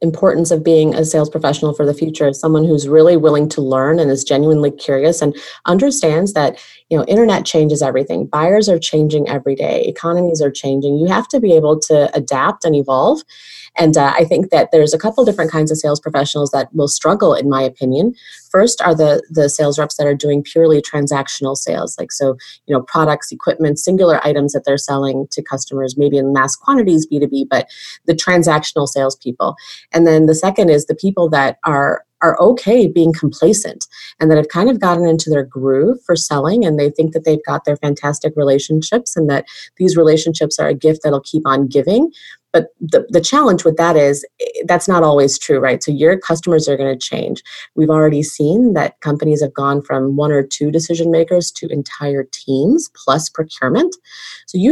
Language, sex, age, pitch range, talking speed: English, female, 30-49, 140-165 Hz, 200 wpm